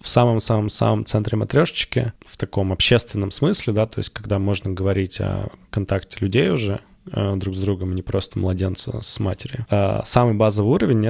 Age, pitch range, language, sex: 20-39, 100-115 Hz, Russian, male